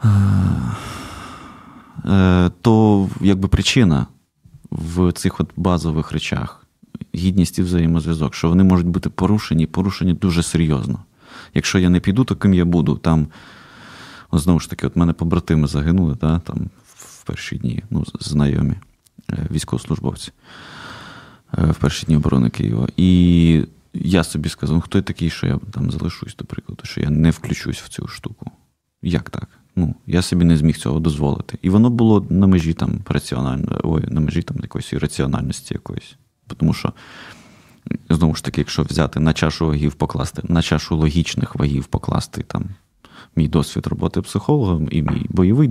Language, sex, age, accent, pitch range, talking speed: Ukrainian, male, 30-49, native, 80-95 Hz, 150 wpm